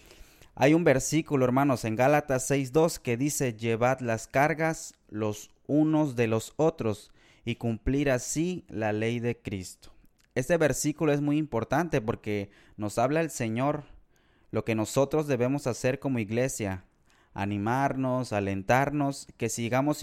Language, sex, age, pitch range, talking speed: Spanish, male, 20-39, 110-140 Hz, 135 wpm